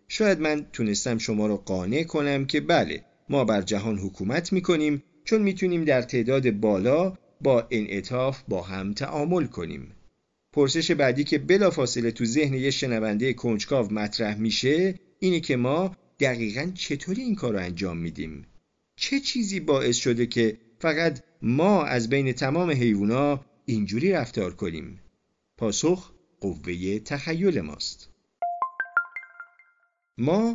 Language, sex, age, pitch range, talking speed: Persian, male, 50-69, 110-155 Hz, 130 wpm